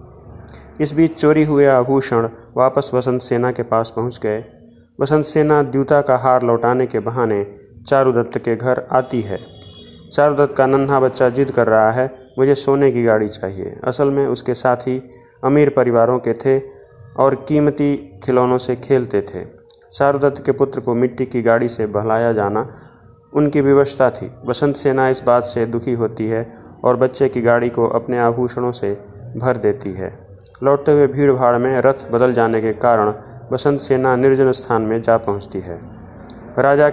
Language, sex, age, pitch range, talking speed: Hindi, male, 30-49, 115-135 Hz, 165 wpm